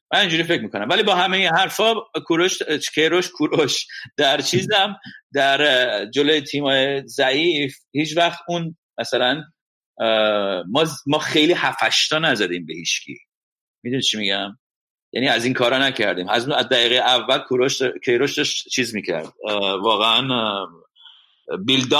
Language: Persian